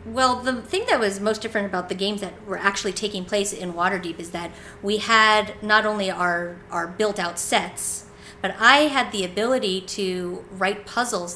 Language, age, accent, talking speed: English, 40-59, American, 185 wpm